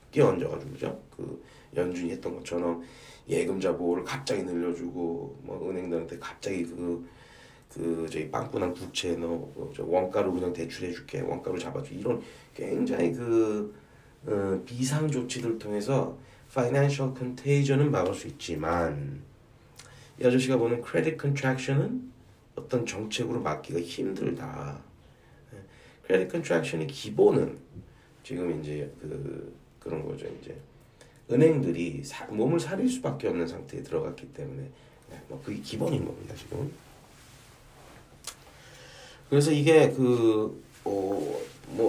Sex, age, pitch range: male, 30-49, 85-130 Hz